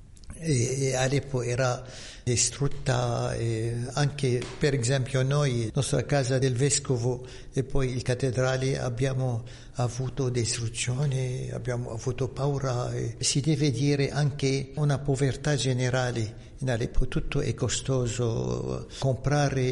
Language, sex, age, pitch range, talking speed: Italian, male, 60-79, 120-135 Hz, 115 wpm